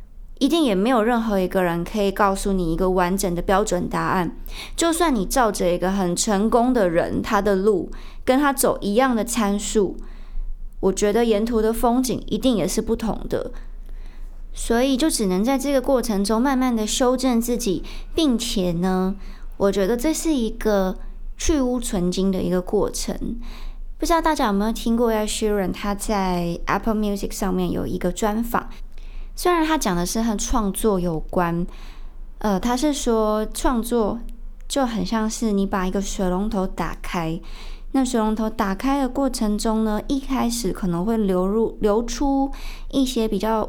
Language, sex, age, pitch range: Chinese, male, 20-39, 190-245 Hz